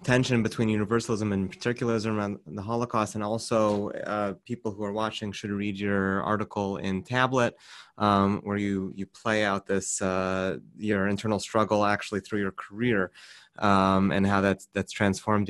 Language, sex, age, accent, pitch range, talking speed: English, male, 20-39, American, 100-115 Hz, 165 wpm